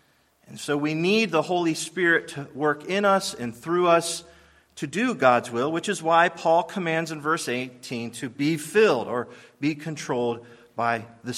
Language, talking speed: English, 180 wpm